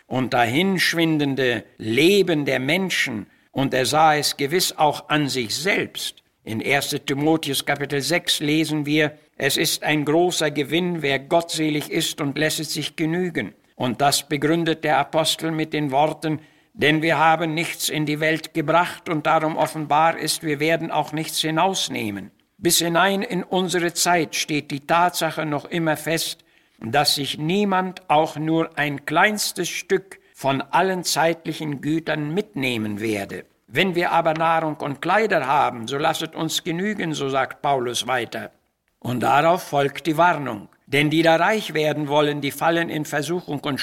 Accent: German